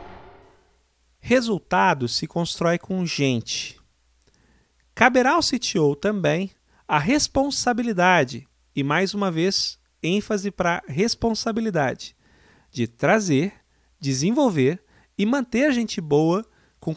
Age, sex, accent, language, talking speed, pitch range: 40-59, male, Brazilian, Portuguese, 95 wpm, 140-215 Hz